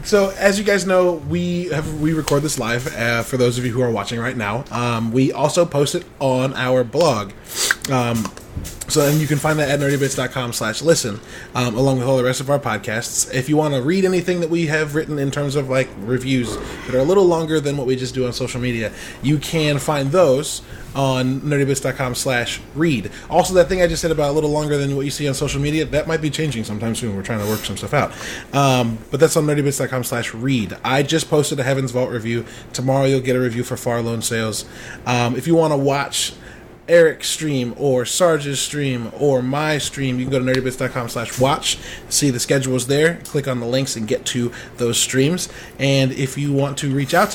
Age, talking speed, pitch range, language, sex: 20-39, 225 wpm, 125-150 Hz, English, male